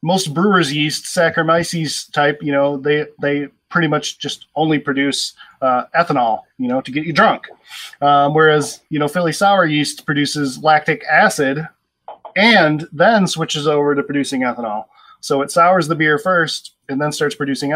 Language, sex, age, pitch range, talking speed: English, male, 20-39, 135-160 Hz, 165 wpm